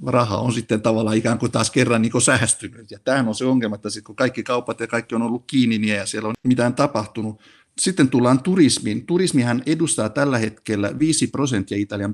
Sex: male